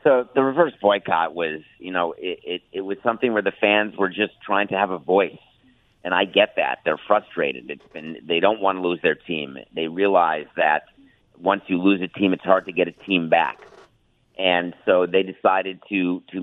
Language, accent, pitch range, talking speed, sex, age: English, American, 85-105 Hz, 210 wpm, male, 50-69